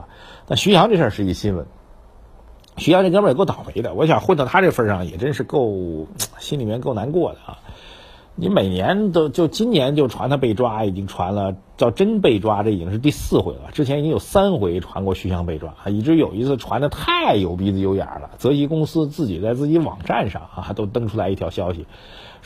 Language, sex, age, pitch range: Chinese, male, 50-69, 95-140 Hz